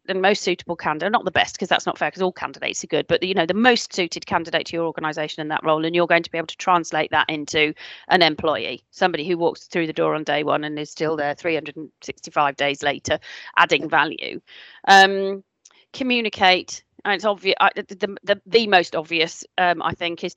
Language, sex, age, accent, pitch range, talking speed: English, female, 40-59, British, 170-195 Hz, 220 wpm